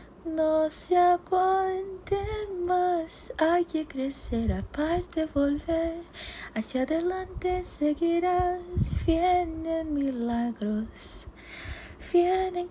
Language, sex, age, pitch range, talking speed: Portuguese, female, 20-39, 280-360 Hz, 70 wpm